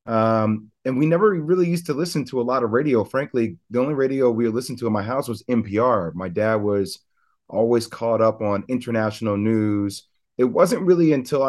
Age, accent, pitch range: 30-49, American, 110-140 Hz